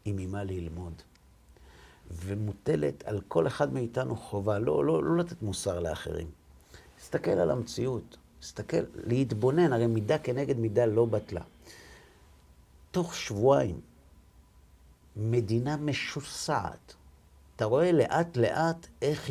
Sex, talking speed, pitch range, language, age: male, 110 wpm, 85-125 Hz, Hebrew, 50-69